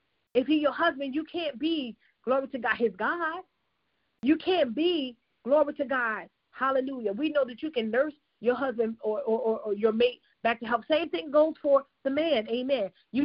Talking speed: 195 wpm